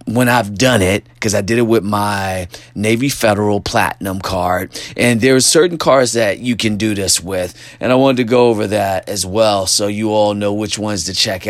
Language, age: English, 30-49